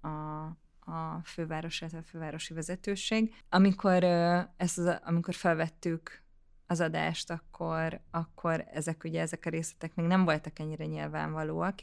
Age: 20-39